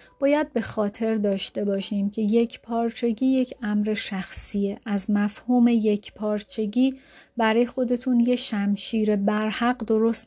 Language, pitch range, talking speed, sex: Persian, 210-245 Hz, 125 wpm, female